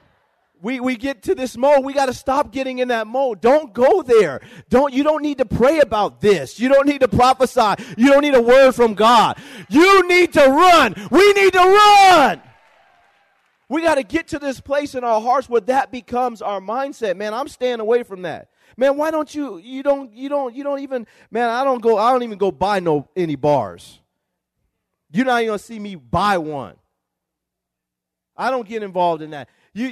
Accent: American